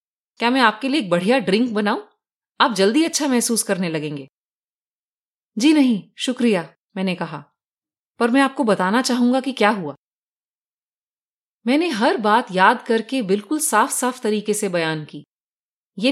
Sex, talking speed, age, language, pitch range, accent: female, 150 wpm, 30-49, Hindi, 195-275 Hz, native